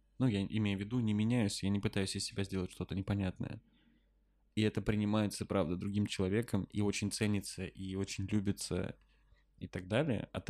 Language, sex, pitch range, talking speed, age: Russian, male, 95-110 Hz, 175 wpm, 20-39